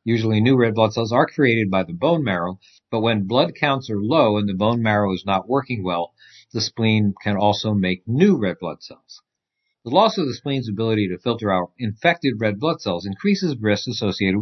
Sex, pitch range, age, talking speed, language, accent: male, 100-130 Hz, 50-69, 210 wpm, English, American